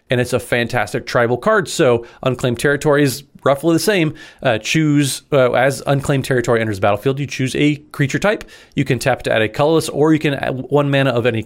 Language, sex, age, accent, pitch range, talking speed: English, male, 30-49, American, 125-150 Hz, 220 wpm